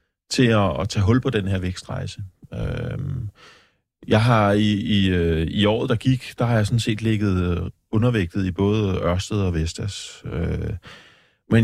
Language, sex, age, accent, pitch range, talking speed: Danish, male, 30-49, native, 95-120 Hz, 150 wpm